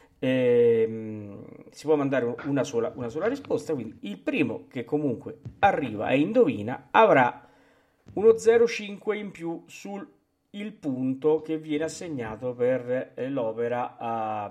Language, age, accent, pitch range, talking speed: Italian, 40-59, native, 130-215 Hz, 115 wpm